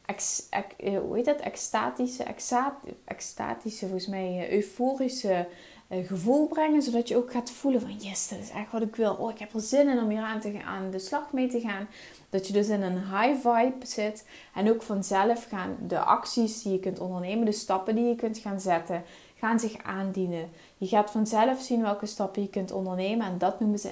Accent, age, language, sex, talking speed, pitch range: Dutch, 20-39, Dutch, female, 210 wpm, 190-250 Hz